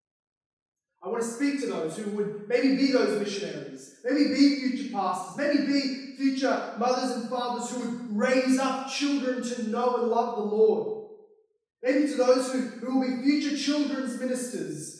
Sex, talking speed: male, 170 wpm